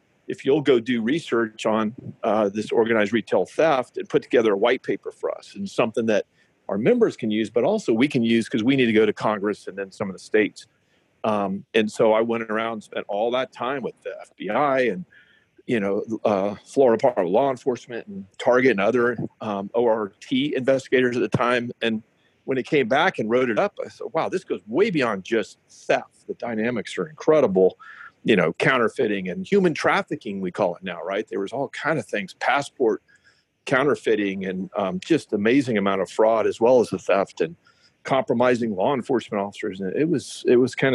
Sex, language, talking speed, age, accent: male, English, 205 wpm, 40-59, American